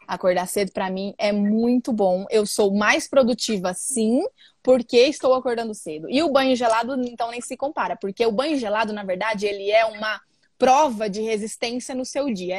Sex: female